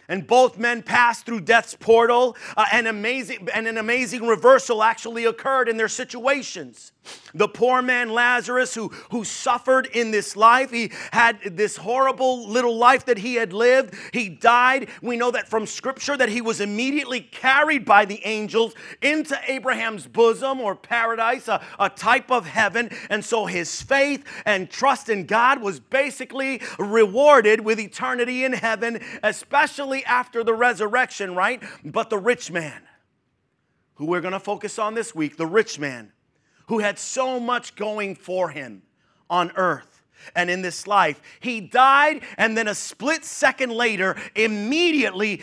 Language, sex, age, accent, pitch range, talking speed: English, male, 40-59, American, 205-255 Hz, 160 wpm